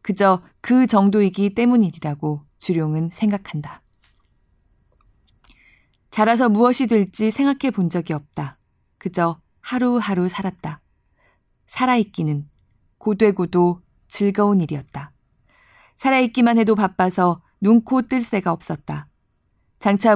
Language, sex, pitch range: Korean, female, 155-225 Hz